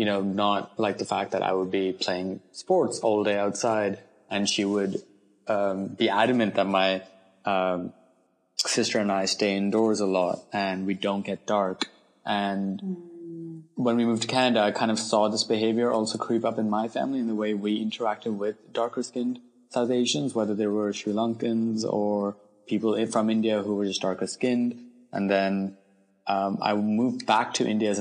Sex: male